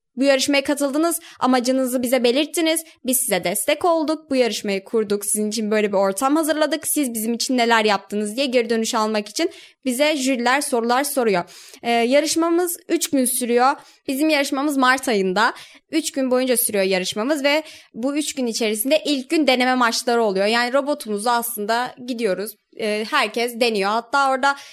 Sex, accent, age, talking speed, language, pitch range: female, native, 20-39, 160 wpm, Turkish, 220-280 Hz